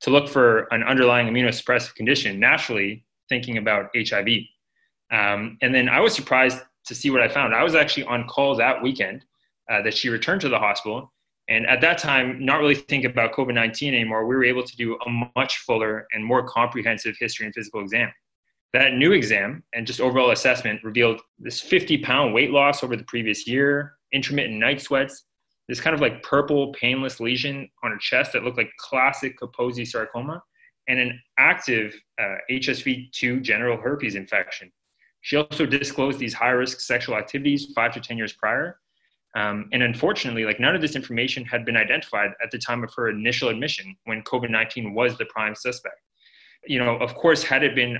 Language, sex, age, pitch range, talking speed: English, male, 20-39, 115-140 Hz, 185 wpm